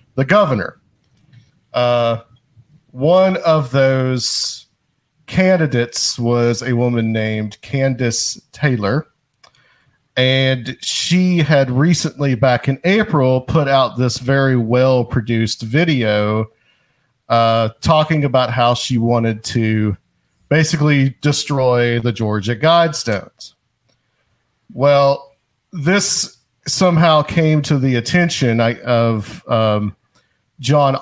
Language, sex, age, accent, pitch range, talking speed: English, male, 40-59, American, 115-145 Hz, 95 wpm